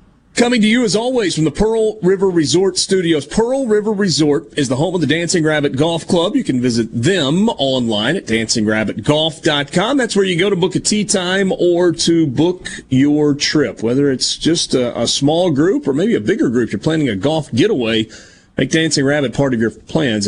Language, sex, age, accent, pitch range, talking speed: English, male, 40-59, American, 140-185 Hz, 200 wpm